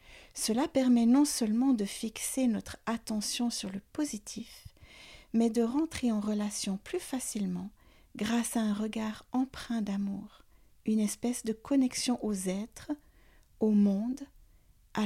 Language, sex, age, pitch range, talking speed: French, female, 50-69, 200-250 Hz, 130 wpm